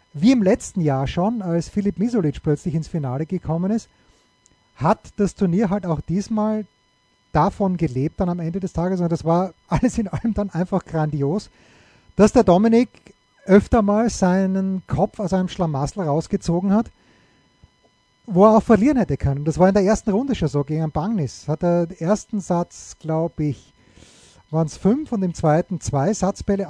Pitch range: 160-200 Hz